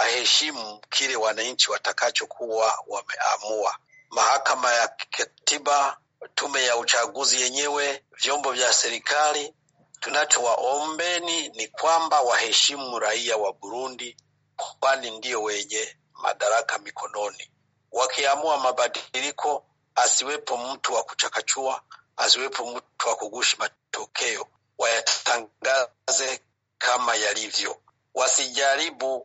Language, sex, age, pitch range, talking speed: Swahili, male, 40-59, 125-145 Hz, 90 wpm